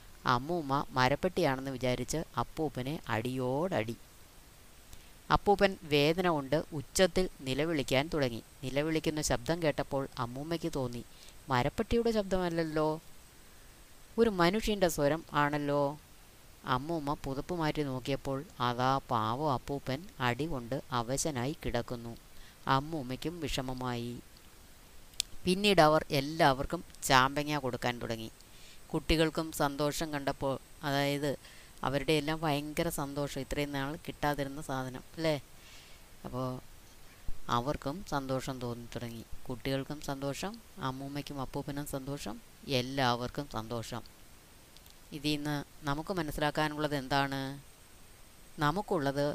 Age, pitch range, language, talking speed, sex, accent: 20-39, 125-155 Hz, Malayalam, 85 wpm, female, native